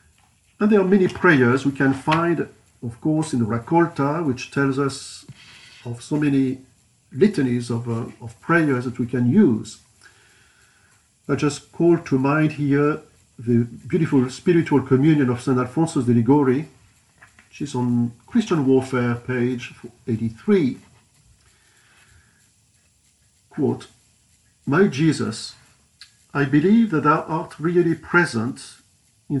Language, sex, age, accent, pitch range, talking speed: English, male, 50-69, French, 120-160 Hz, 125 wpm